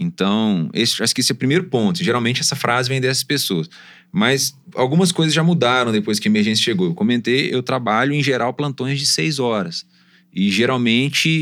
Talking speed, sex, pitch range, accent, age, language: 195 wpm, male, 115-170 Hz, Brazilian, 20-39, Portuguese